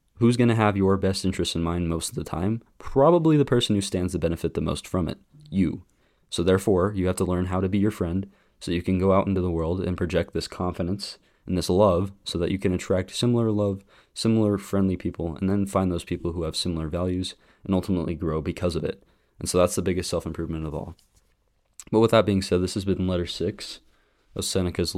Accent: American